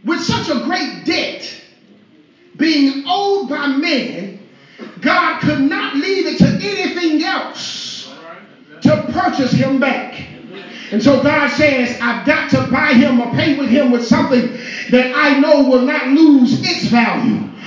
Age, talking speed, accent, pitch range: 40-59, 150 wpm, American, 240-290 Hz